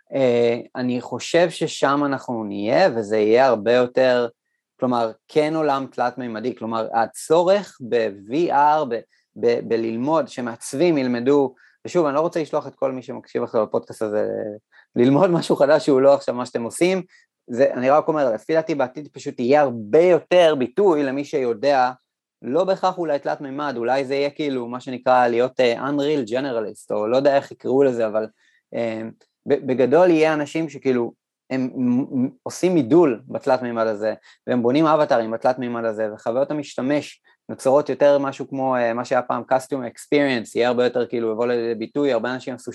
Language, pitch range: Hebrew, 115-145 Hz